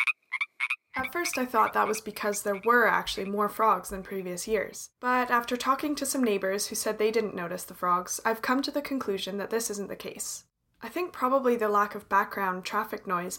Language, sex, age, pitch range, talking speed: English, female, 20-39, 195-250 Hz, 210 wpm